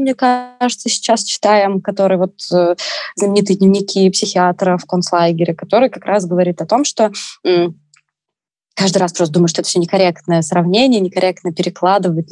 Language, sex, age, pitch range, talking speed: Russian, female, 20-39, 180-215 Hz, 150 wpm